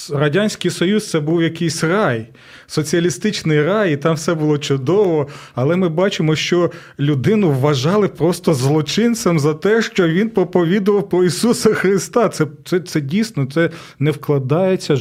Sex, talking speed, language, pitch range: male, 150 wpm, Ukrainian, 140-175 Hz